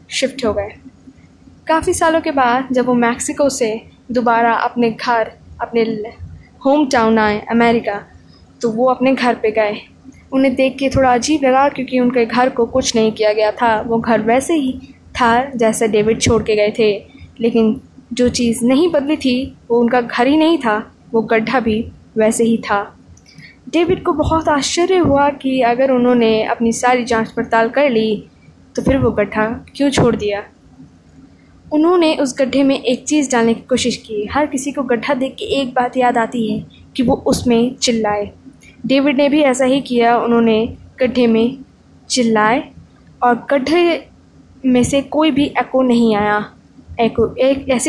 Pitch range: 230-270 Hz